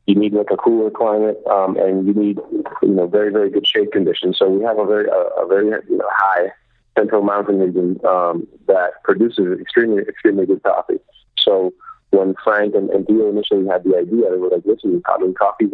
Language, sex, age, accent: English, male, 40-59, American